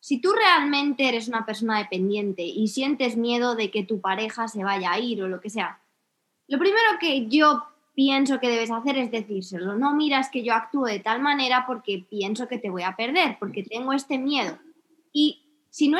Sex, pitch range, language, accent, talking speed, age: female, 215-290 Hz, Spanish, Spanish, 205 wpm, 20-39